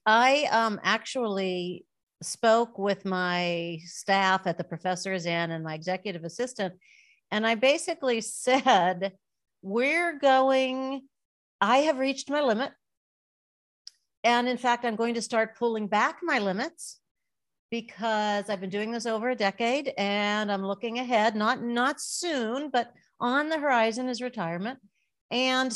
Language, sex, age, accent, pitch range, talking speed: English, female, 50-69, American, 180-245 Hz, 135 wpm